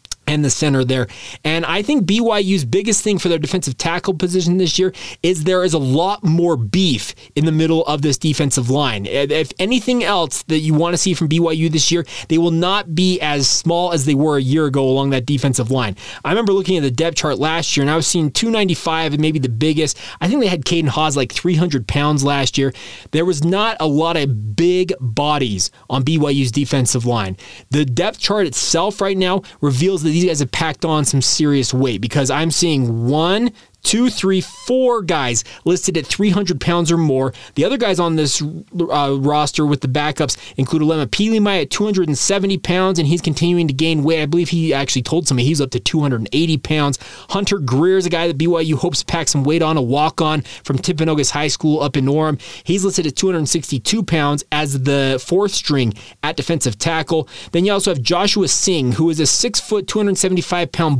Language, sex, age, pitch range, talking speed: English, male, 20-39, 140-180 Hz, 205 wpm